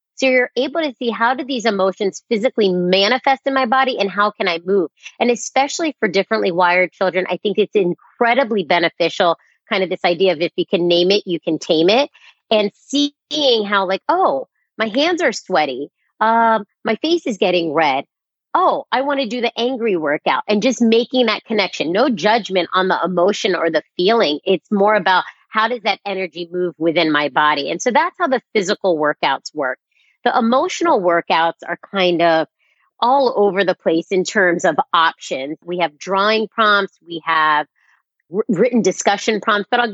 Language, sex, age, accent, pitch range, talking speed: English, female, 30-49, American, 175-230 Hz, 185 wpm